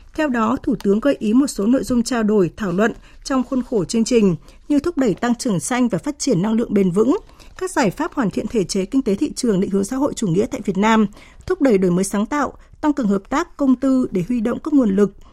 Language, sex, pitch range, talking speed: Vietnamese, female, 205-270 Hz, 275 wpm